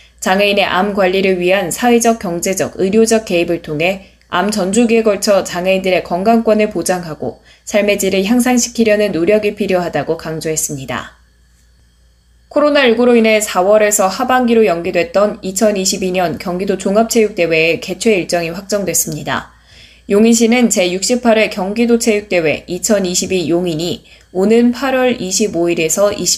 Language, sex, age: Korean, female, 20-39